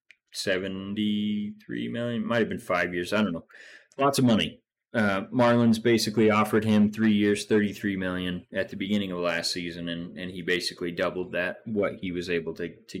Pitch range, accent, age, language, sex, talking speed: 95-110 Hz, American, 30-49, English, male, 190 wpm